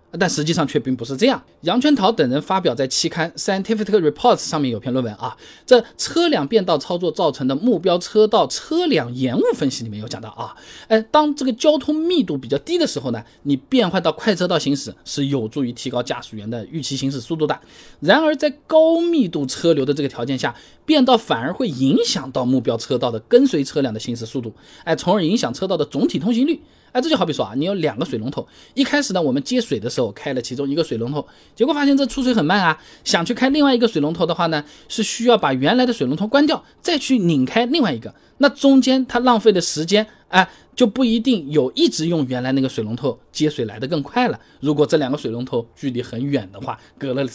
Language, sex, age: Chinese, male, 20-39